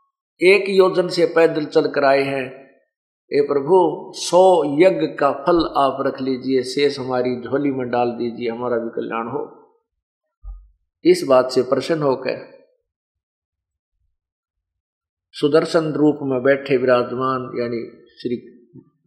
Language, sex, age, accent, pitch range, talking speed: Hindi, male, 50-69, native, 135-190 Hz, 125 wpm